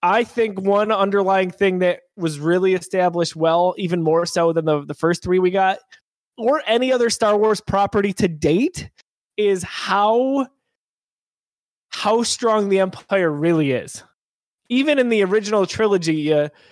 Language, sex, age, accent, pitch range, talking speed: English, male, 20-39, American, 160-210 Hz, 150 wpm